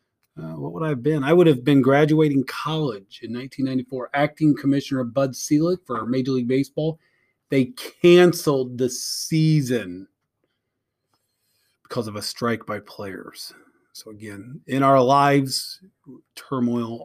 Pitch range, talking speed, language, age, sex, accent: 115-155 Hz, 135 wpm, English, 30-49, male, American